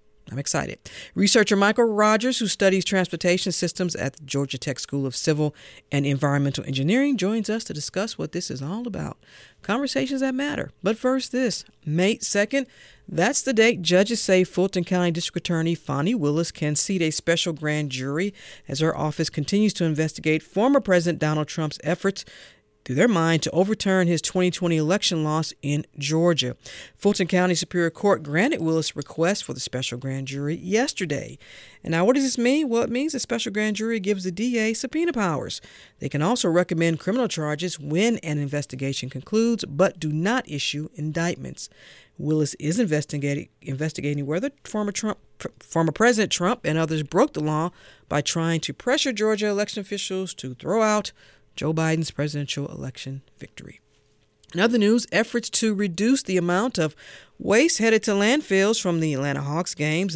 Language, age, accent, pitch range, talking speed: English, 50-69, American, 150-215 Hz, 170 wpm